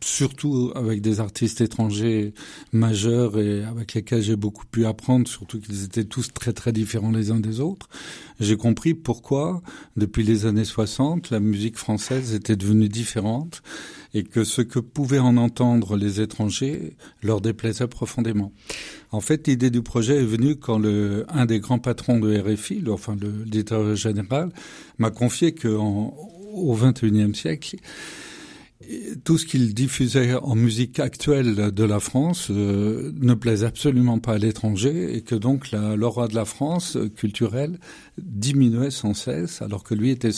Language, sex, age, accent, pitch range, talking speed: French, male, 50-69, French, 110-130 Hz, 160 wpm